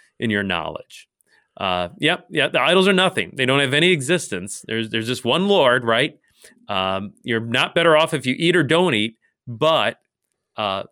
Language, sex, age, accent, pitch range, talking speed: English, male, 30-49, American, 115-165 Hz, 185 wpm